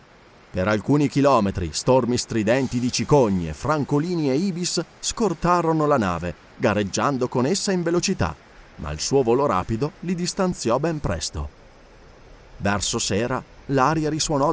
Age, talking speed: 30-49, 130 wpm